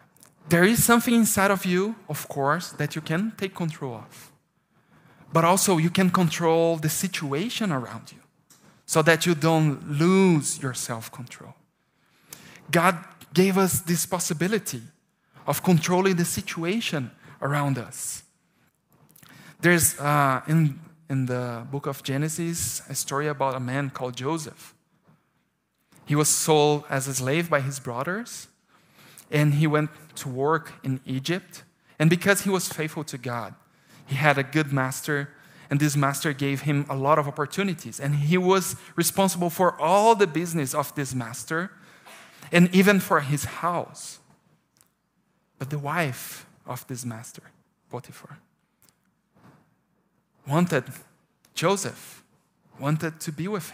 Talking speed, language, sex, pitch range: 135 wpm, English, male, 140-175 Hz